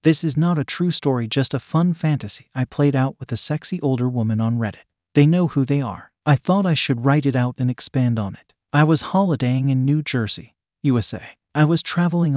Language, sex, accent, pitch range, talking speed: English, male, American, 125-155 Hz, 225 wpm